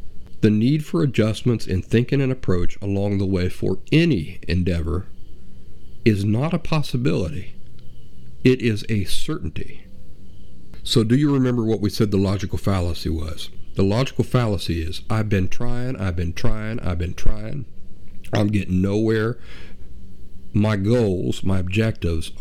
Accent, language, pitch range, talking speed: American, English, 95-120 Hz, 140 wpm